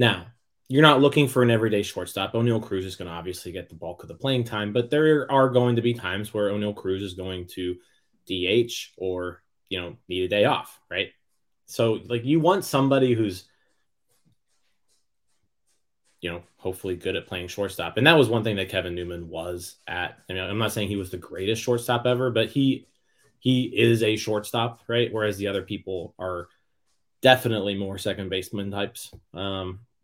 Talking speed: 190 wpm